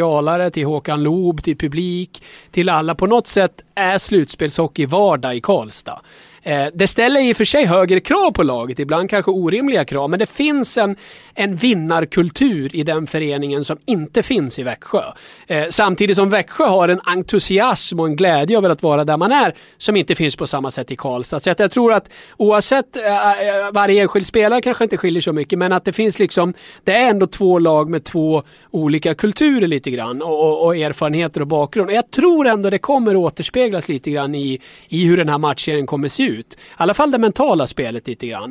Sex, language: male, English